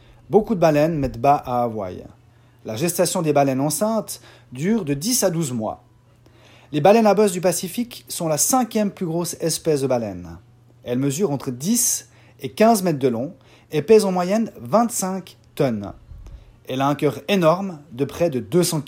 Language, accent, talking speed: French, French, 180 wpm